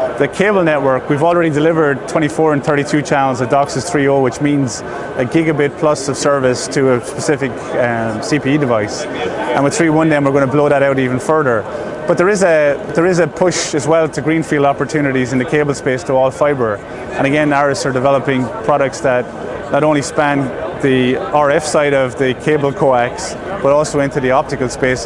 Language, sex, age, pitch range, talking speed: English, male, 20-39, 135-155 Hz, 190 wpm